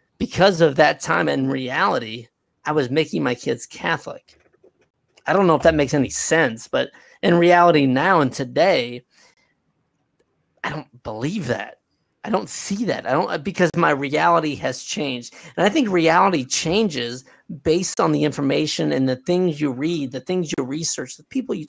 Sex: male